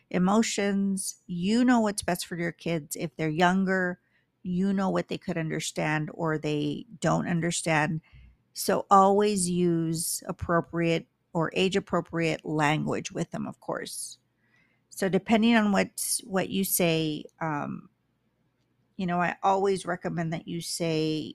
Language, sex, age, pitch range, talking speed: English, female, 50-69, 165-195 Hz, 135 wpm